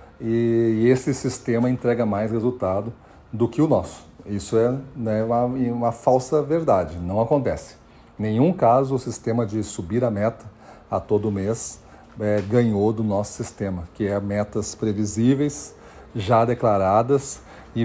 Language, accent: Portuguese, Brazilian